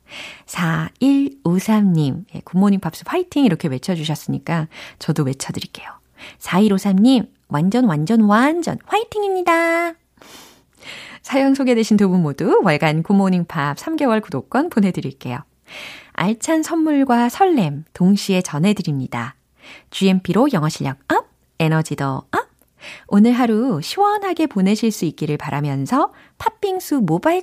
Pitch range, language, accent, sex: 160-270 Hz, Korean, native, female